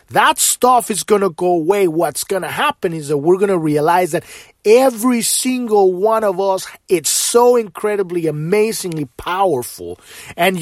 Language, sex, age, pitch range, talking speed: English, male, 30-49, 175-230 Hz, 165 wpm